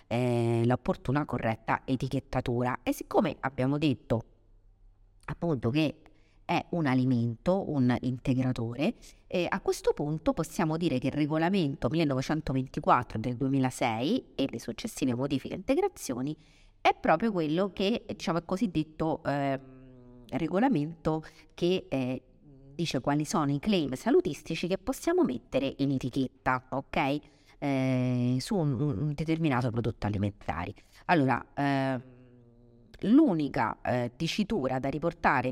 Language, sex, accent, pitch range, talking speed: Italian, female, native, 130-170 Hz, 110 wpm